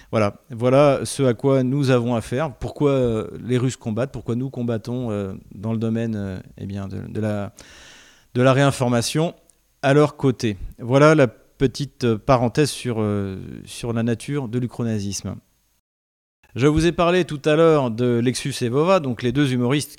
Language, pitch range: French, 110-140 Hz